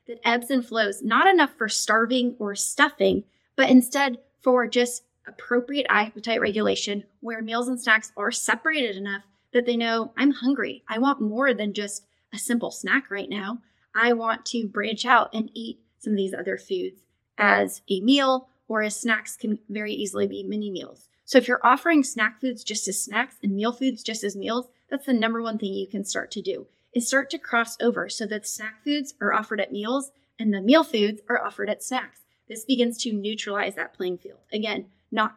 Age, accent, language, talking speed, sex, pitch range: 20-39, American, English, 200 wpm, female, 210-245 Hz